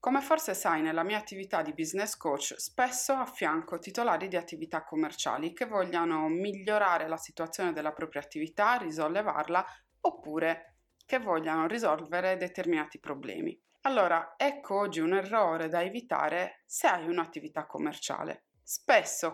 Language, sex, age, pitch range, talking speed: Italian, female, 20-39, 165-250 Hz, 130 wpm